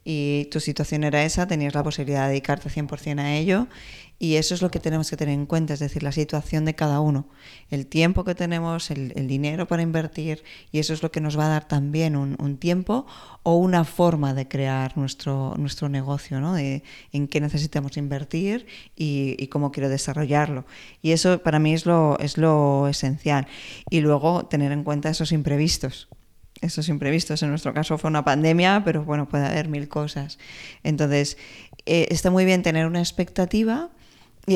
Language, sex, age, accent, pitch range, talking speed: Spanish, female, 20-39, Spanish, 145-165 Hz, 195 wpm